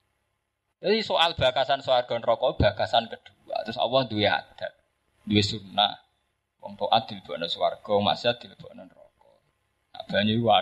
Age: 20-39